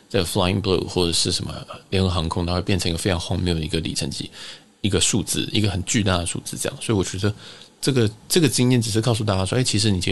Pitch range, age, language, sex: 90-115 Hz, 20-39, Chinese, male